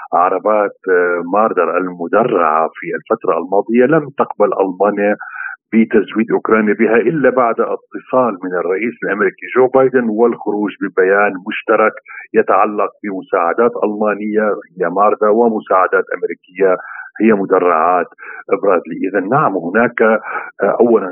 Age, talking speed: 50-69, 105 wpm